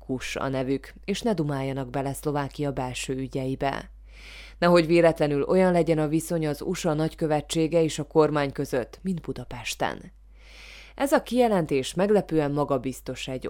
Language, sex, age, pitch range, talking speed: Hungarian, female, 20-39, 135-170 Hz, 135 wpm